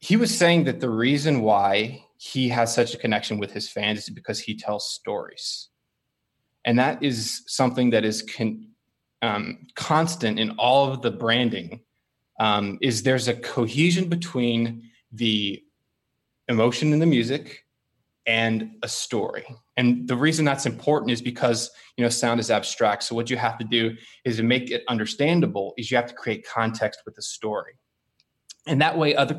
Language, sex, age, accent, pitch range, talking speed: English, male, 20-39, American, 115-150 Hz, 170 wpm